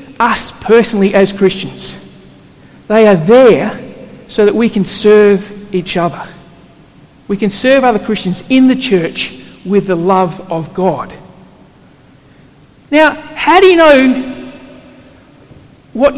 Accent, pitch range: Australian, 215-295 Hz